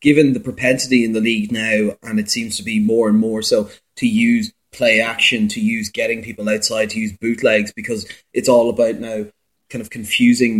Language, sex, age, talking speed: English, male, 30-49, 205 wpm